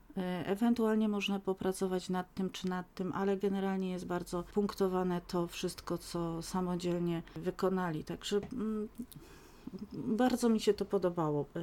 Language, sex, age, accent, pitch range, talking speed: Polish, female, 40-59, native, 170-195 Hz, 125 wpm